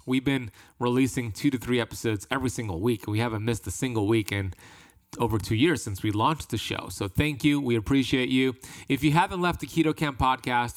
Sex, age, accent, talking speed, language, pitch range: male, 30-49, American, 215 wpm, English, 115-150 Hz